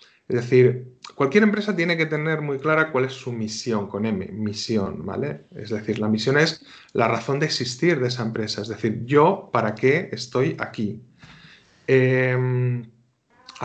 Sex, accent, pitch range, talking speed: male, Spanish, 115-145 Hz, 165 wpm